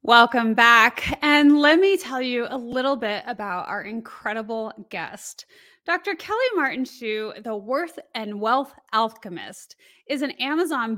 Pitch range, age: 205-285 Hz, 20-39